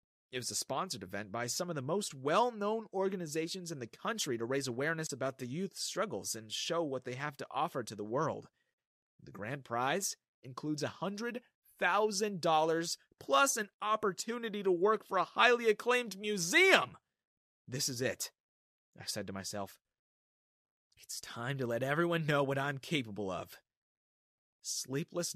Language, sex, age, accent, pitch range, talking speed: English, male, 30-49, American, 115-185 Hz, 155 wpm